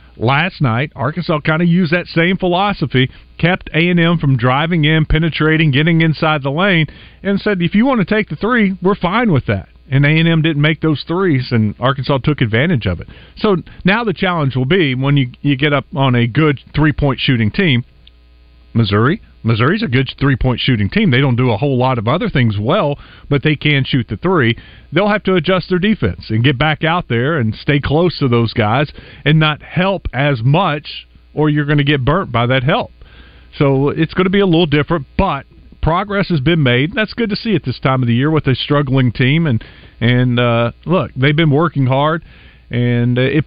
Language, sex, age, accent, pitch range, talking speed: English, male, 40-59, American, 125-170 Hz, 210 wpm